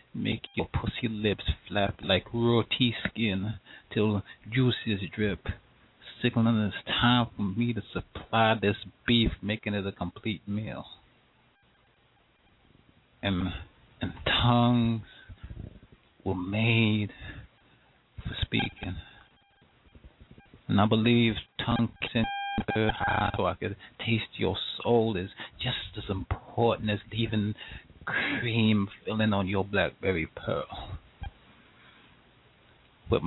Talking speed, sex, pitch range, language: 105 wpm, male, 95-115 Hz, English